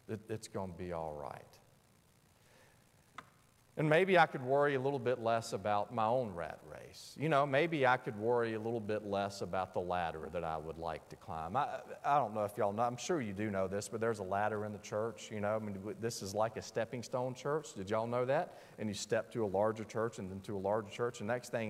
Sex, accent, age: male, American, 40-59